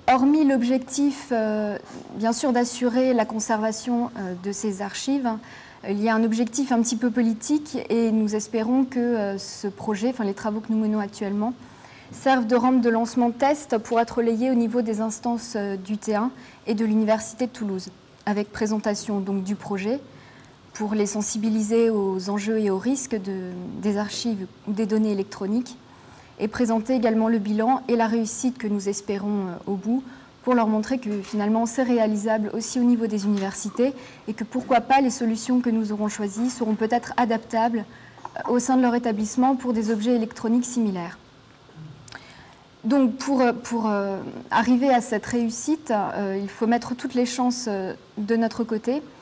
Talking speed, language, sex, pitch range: 165 wpm, French, female, 210-245 Hz